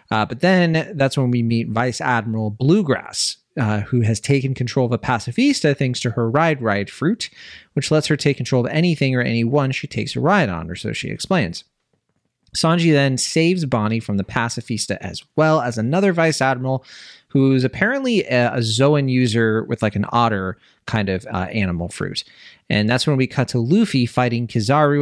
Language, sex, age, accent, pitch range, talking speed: English, male, 30-49, American, 105-140 Hz, 190 wpm